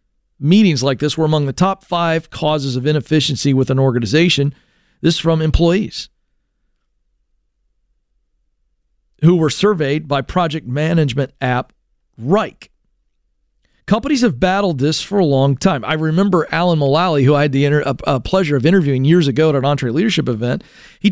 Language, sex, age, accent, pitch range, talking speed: English, male, 40-59, American, 140-195 Hz, 150 wpm